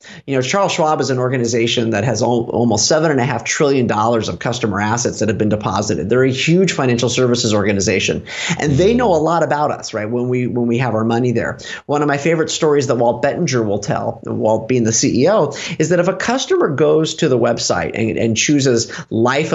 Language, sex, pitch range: English, male, 120-170 Hz